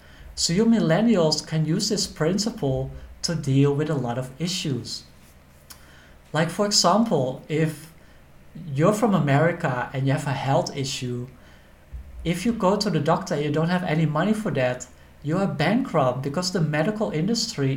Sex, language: male, English